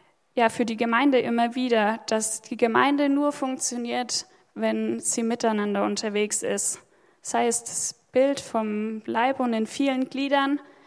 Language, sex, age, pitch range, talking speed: German, female, 10-29, 220-275 Hz, 145 wpm